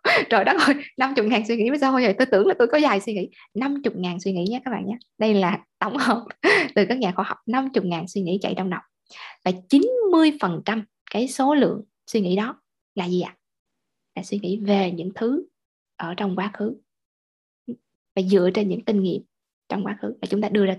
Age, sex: 20-39, female